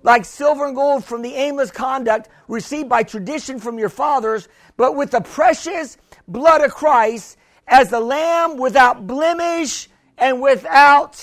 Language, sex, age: English, male, 50-69